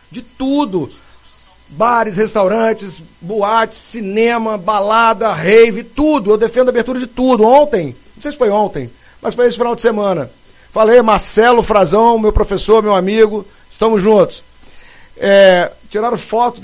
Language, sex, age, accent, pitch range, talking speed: Portuguese, male, 40-59, Brazilian, 195-240 Hz, 135 wpm